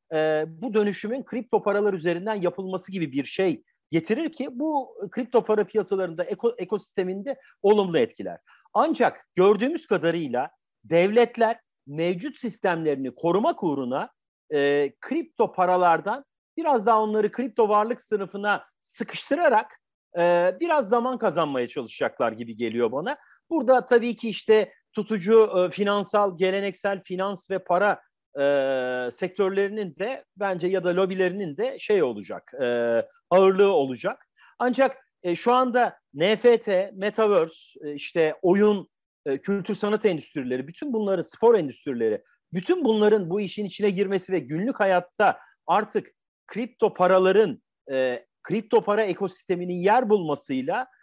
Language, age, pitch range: Turkish, 50-69, 180-235 Hz